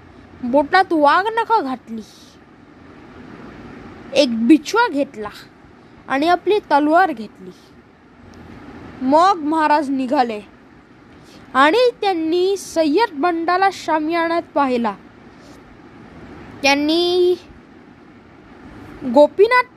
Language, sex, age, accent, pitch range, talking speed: Marathi, female, 20-39, native, 275-345 Hz, 70 wpm